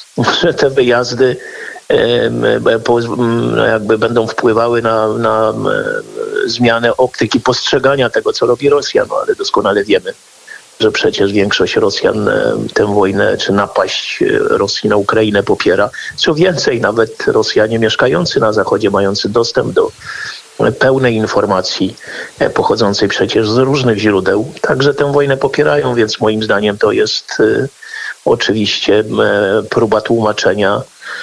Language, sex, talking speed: Polish, male, 115 wpm